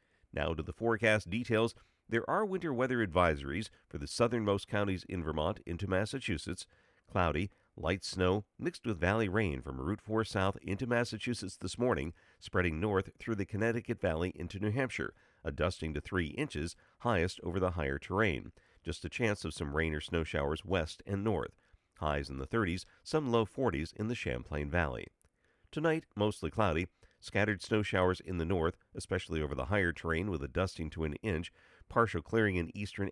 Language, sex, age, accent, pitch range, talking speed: English, male, 50-69, American, 85-115 Hz, 180 wpm